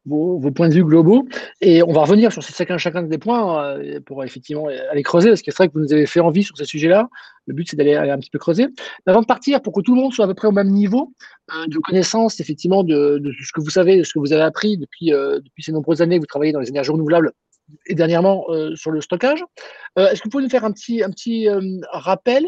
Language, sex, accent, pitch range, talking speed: French, male, French, 155-210 Hz, 285 wpm